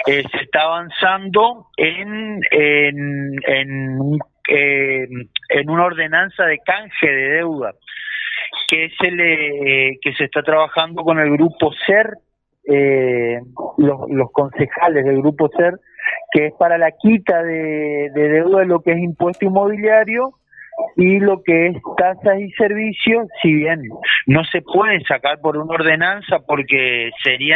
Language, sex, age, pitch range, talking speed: Spanish, male, 40-59, 145-195 Hz, 145 wpm